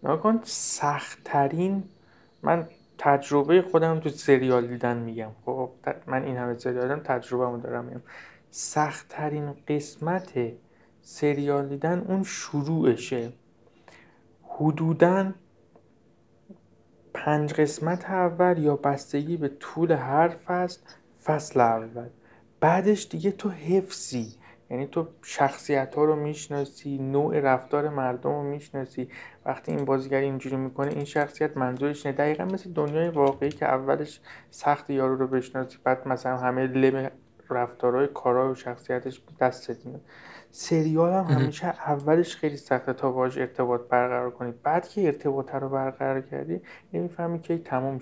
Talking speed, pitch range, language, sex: 120 wpm, 130-160 Hz, Persian, male